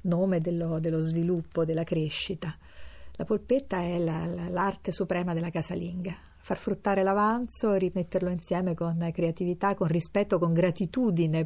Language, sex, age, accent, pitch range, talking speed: Italian, female, 40-59, native, 160-185 Hz, 140 wpm